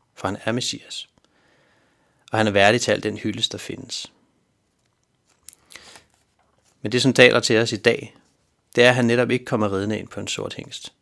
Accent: native